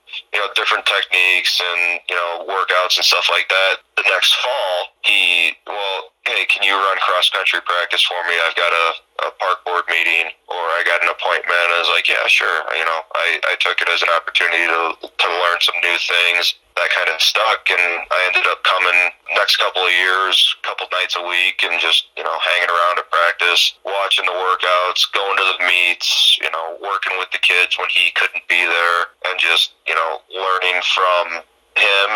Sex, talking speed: male, 200 wpm